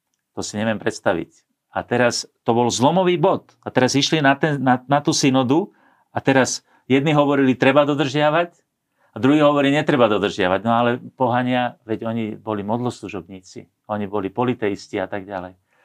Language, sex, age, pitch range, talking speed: Slovak, male, 40-59, 105-135 Hz, 165 wpm